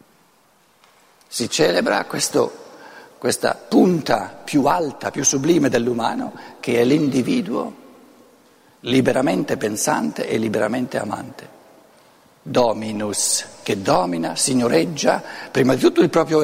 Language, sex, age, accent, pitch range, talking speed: Italian, male, 60-79, native, 125-160 Hz, 95 wpm